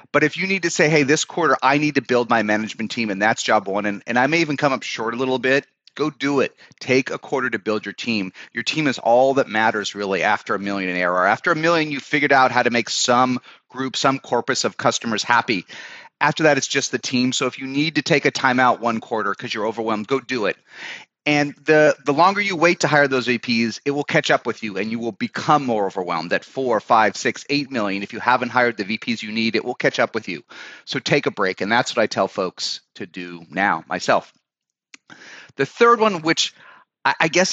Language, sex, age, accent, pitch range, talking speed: English, male, 30-49, American, 110-150 Hz, 245 wpm